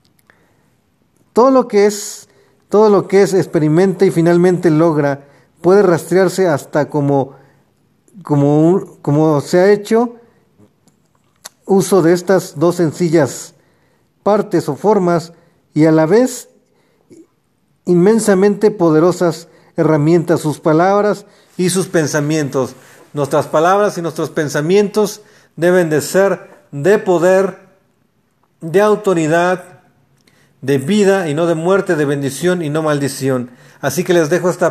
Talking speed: 120 wpm